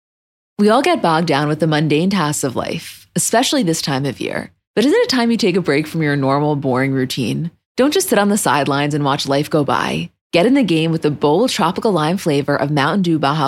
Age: 20-39